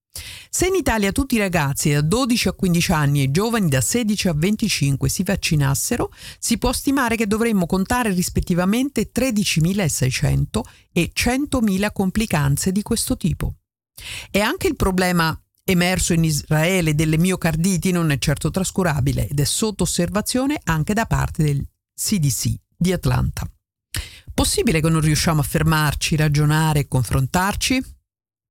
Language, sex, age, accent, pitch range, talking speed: Dutch, female, 50-69, Italian, 150-205 Hz, 140 wpm